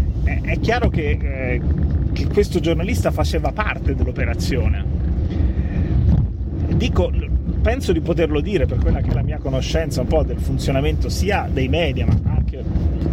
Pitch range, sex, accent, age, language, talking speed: 75-85 Hz, male, native, 30-49, Italian, 135 wpm